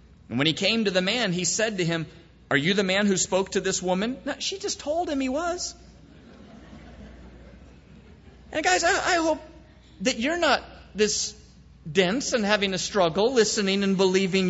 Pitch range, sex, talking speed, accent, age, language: 175-255 Hz, male, 180 wpm, American, 40-59, English